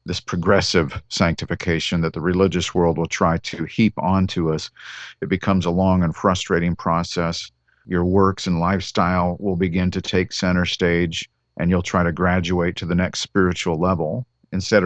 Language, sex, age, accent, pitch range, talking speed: English, male, 50-69, American, 85-100 Hz, 165 wpm